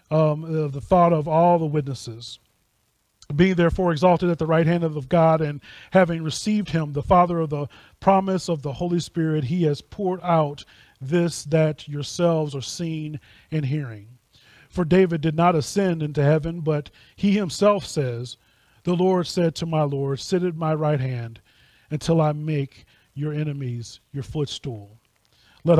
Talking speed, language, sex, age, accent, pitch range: 165 wpm, English, male, 30-49, American, 135-170 Hz